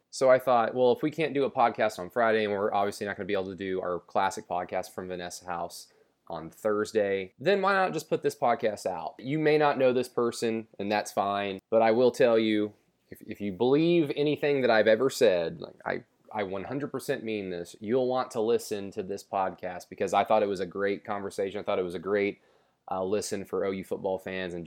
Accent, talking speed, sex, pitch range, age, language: American, 230 wpm, male, 100-125 Hz, 20-39, English